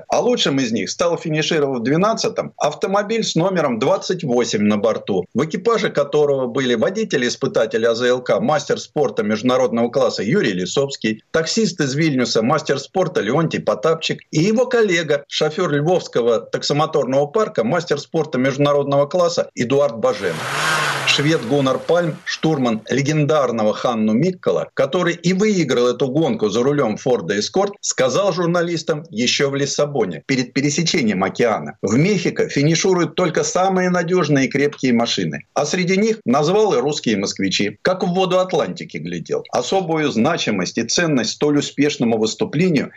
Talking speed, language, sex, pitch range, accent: 135 wpm, Russian, male, 140-190 Hz, native